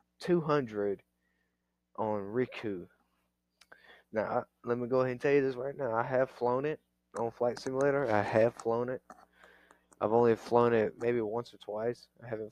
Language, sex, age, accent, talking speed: English, male, 20-39, American, 175 wpm